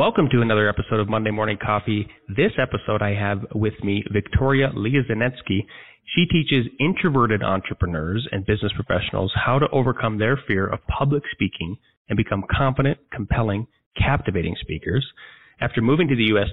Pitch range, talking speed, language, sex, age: 100-130 Hz, 155 wpm, English, male, 30-49